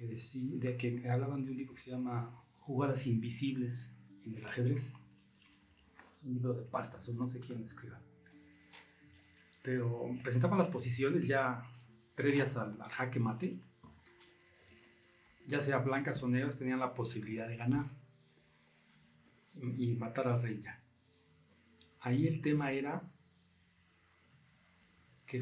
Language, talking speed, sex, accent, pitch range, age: Spanish, 125 wpm, male, Mexican, 115-140 Hz, 40-59